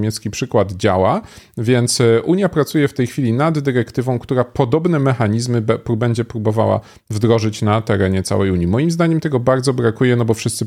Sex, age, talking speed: male, 40-59, 165 wpm